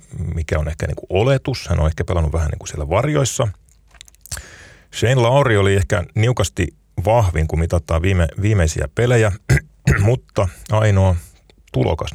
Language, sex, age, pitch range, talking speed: Finnish, male, 30-49, 80-100 Hz, 135 wpm